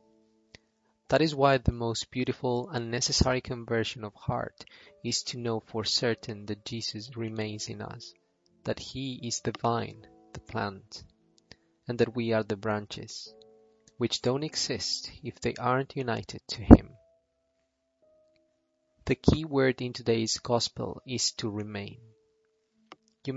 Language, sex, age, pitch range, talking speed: English, male, 20-39, 110-130 Hz, 135 wpm